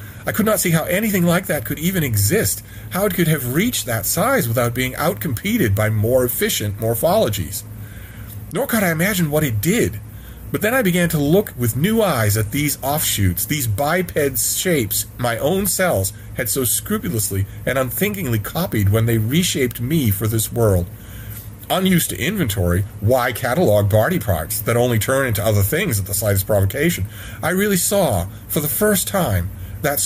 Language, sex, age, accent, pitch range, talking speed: English, male, 40-59, American, 105-155 Hz, 175 wpm